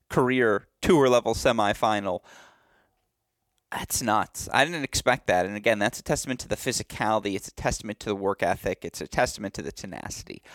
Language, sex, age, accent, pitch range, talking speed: English, male, 30-49, American, 105-130 Hz, 175 wpm